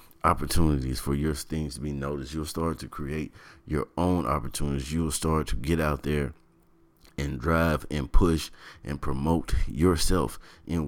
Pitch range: 70-85 Hz